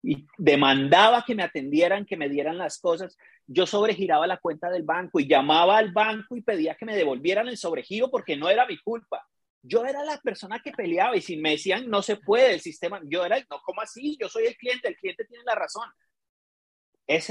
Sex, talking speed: male, 215 wpm